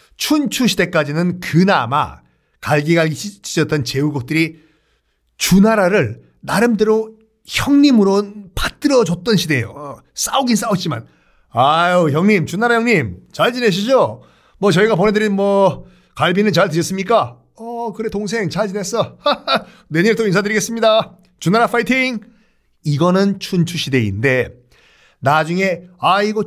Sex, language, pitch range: male, Korean, 145-210 Hz